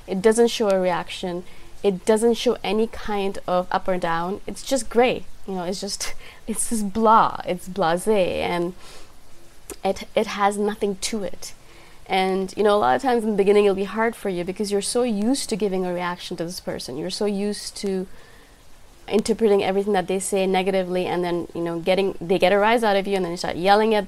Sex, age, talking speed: female, 20-39, 215 wpm